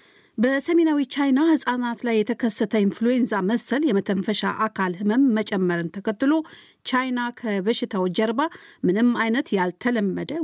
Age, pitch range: 50-69, 195-255 Hz